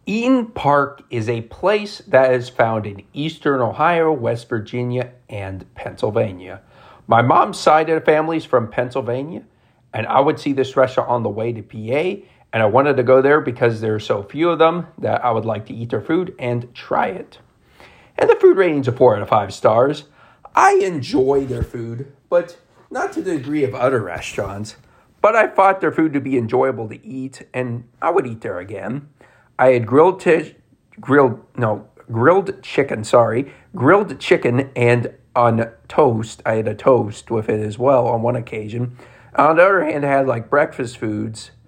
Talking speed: 190 wpm